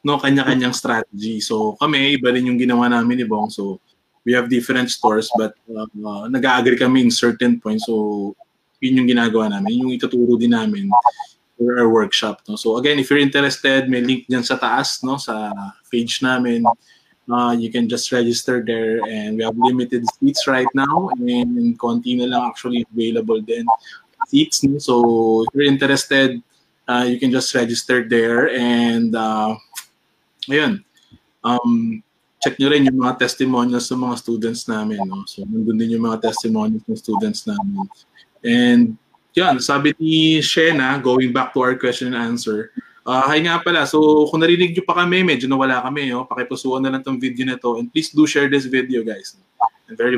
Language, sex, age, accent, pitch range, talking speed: English, male, 20-39, Filipino, 120-150 Hz, 175 wpm